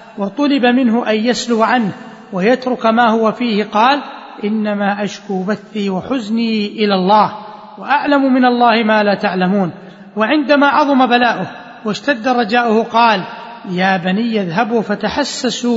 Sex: male